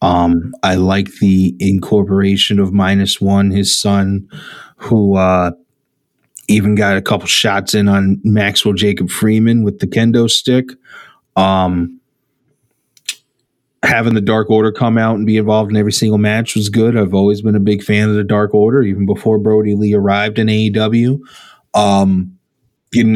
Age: 30-49